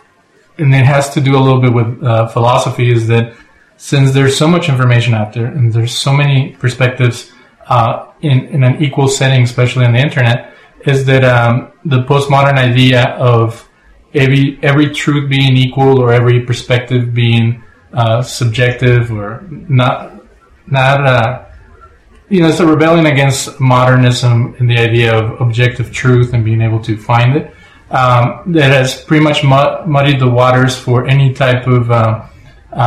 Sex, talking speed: male, 165 wpm